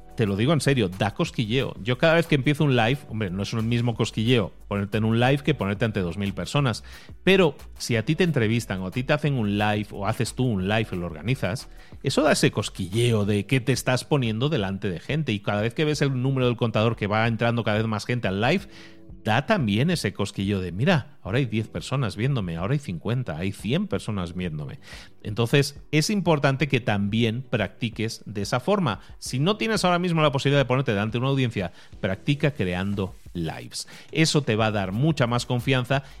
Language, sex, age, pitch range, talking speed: Spanish, male, 30-49, 105-140 Hz, 215 wpm